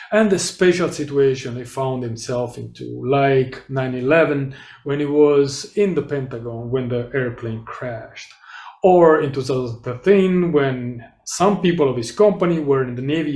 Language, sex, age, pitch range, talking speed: English, male, 30-49, 130-170 Hz, 155 wpm